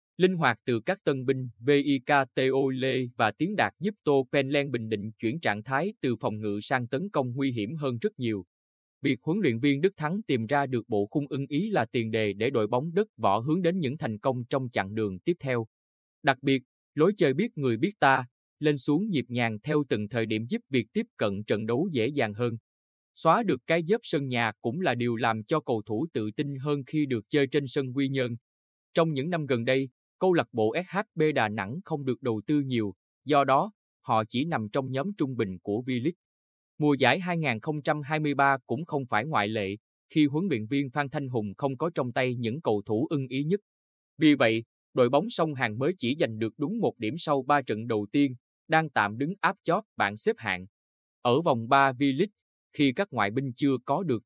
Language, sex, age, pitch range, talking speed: Vietnamese, male, 20-39, 110-150 Hz, 220 wpm